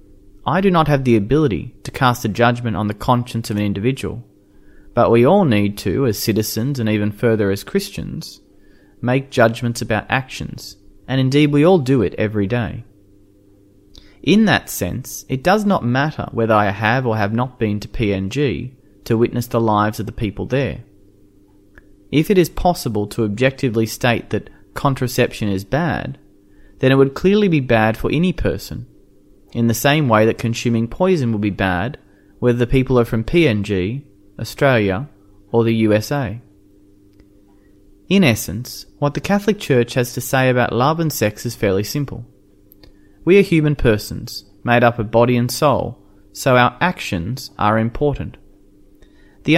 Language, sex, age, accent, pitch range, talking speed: English, male, 30-49, Australian, 100-130 Hz, 165 wpm